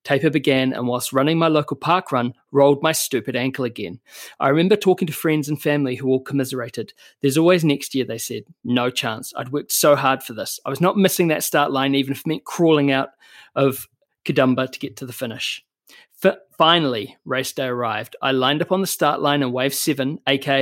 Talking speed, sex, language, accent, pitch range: 210 wpm, male, English, Australian, 135-165 Hz